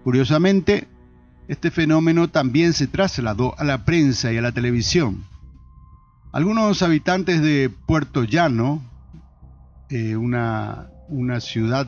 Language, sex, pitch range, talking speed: Spanish, male, 115-160 Hz, 110 wpm